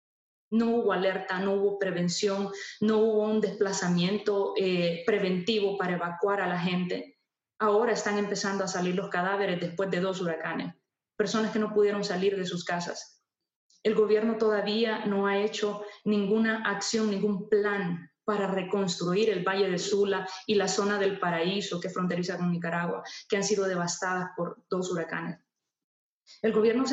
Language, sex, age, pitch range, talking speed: Spanish, female, 20-39, 180-215 Hz, 160 wpm